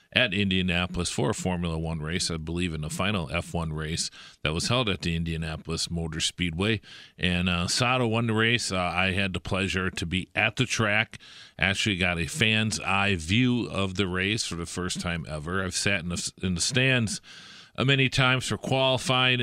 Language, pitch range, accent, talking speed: English, 90-110 Hz, American, 190 wpm